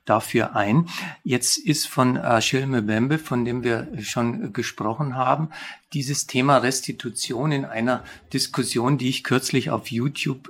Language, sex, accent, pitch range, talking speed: German, male, German, 120-160 Hz, 150 wpm